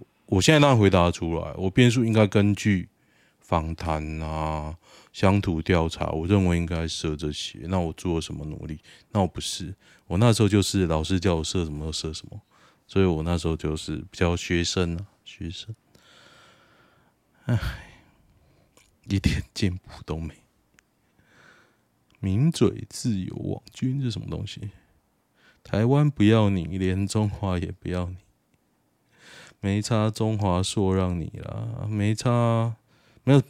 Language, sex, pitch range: Chinese, male, 90-120 Hz